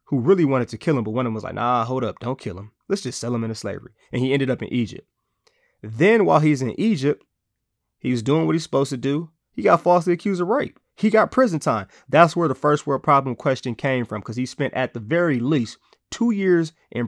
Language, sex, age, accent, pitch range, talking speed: English, male, 20-39, American, 120-150 Hz, 255 wpm